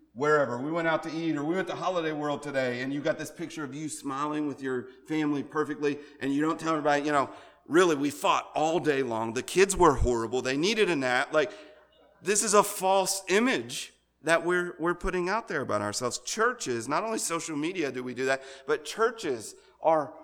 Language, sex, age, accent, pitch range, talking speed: English, male, 40-59, American, 130-175 Hz, 215 wpm